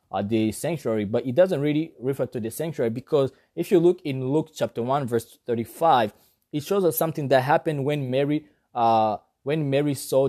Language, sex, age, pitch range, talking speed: English, male, 20-39, 120-155 Hz, 190 wpm